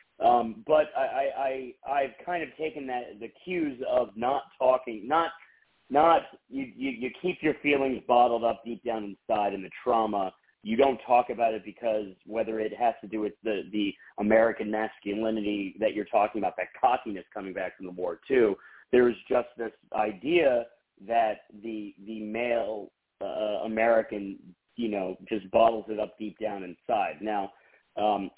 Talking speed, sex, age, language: 170 wpm, male, 40-59, English